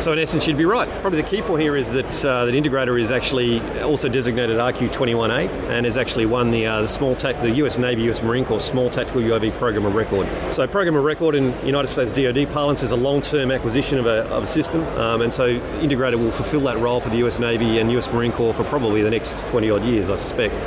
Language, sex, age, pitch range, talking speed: English, male, 30-49, 115-140 Hz, 245 wpm